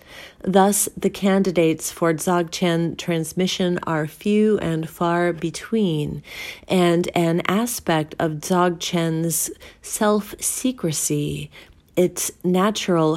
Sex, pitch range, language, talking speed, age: female, 165-200 Hz, English, 85 wpm, 30-49